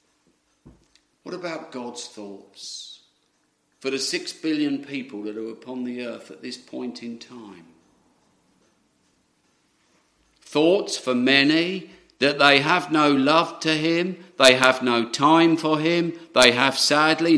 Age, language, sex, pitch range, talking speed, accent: 50-69, English, male, 125-180 Hz, 130 wpm, British